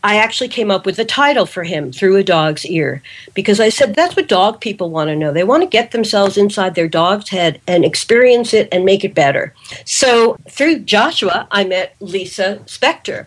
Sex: female